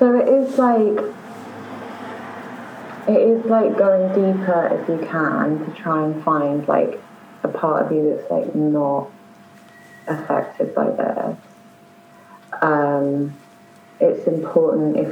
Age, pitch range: 20-39, 140-160 Hz